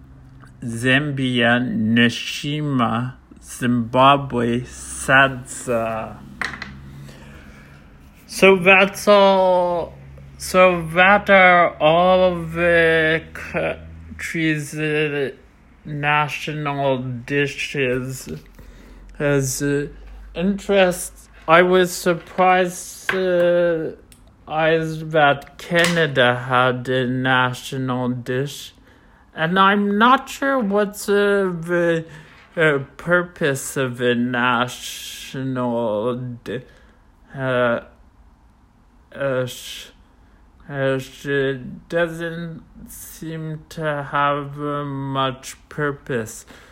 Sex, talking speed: male, 70 wpm